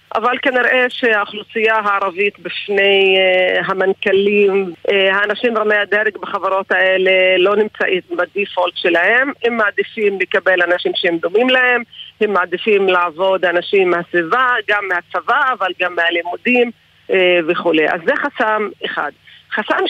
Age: 40-59